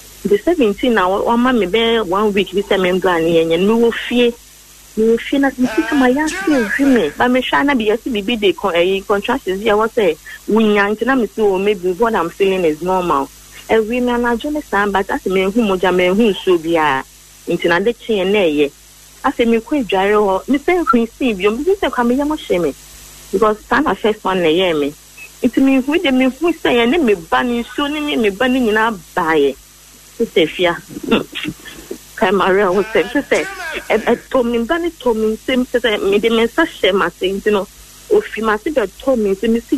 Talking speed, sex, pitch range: 105 wpm, female, 200-265 Hz